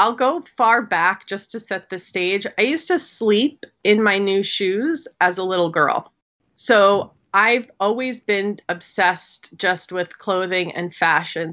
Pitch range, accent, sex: 180-230 Hz, American, female